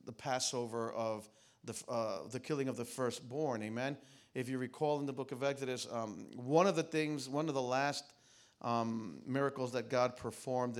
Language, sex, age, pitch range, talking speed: English, male, 40-59, 110-135 Hz, 180 wpm